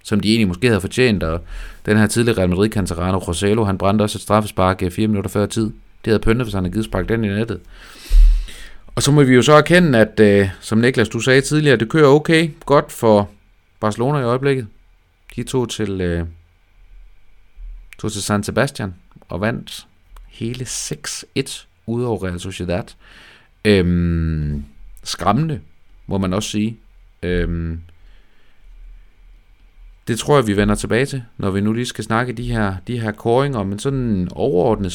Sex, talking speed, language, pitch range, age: male, 165 wpm, Danish, 95-120 Hz, 30-49